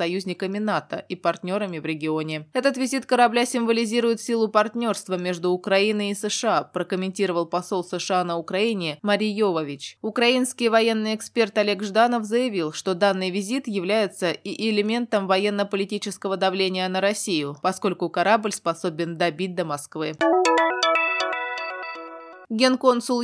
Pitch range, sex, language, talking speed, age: 185-220 Hz, female, Russian, 120 wpm, 20-39